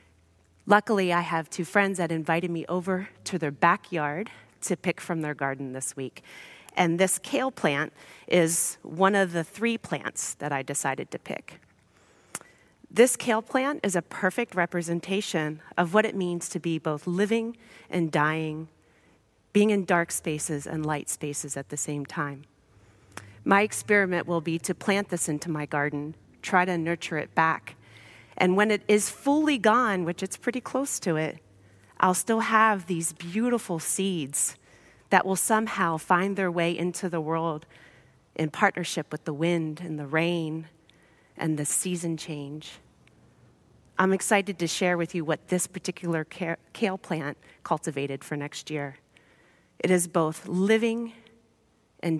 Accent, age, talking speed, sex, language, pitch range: American, 30-49, 155 wpm, female, English, 150-190 Hz